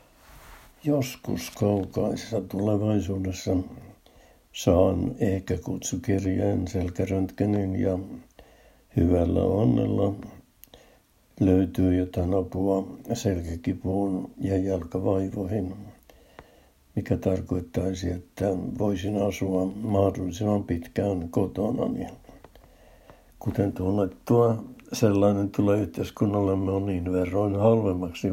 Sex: male